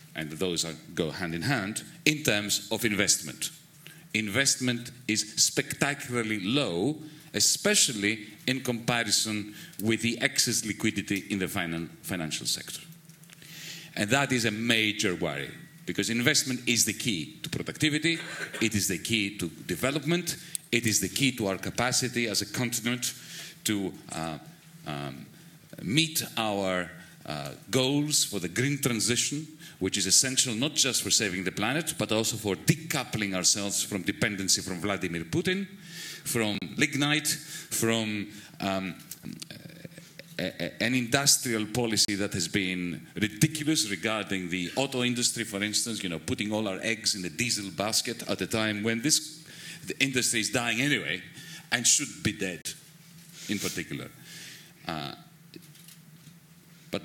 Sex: male